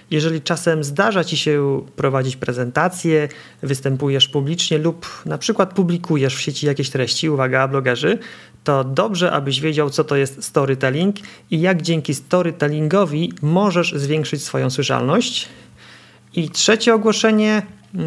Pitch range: 135-165 Hz